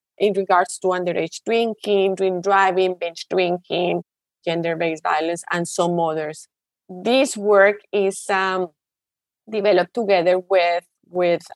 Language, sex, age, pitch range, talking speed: English, female, 20-39, 180-205 Hz, 115 wpm